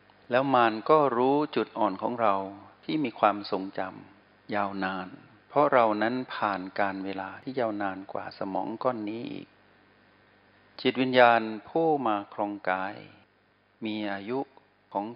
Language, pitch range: Thai, 95-115 Hz